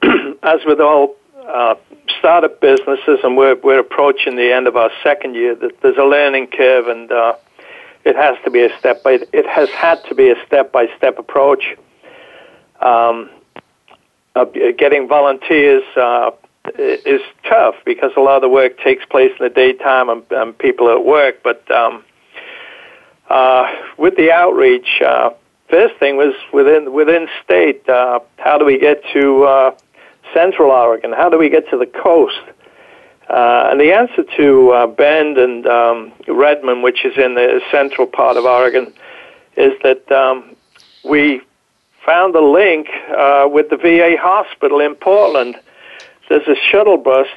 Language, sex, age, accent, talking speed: English, male, 60-79, American, 160 wpm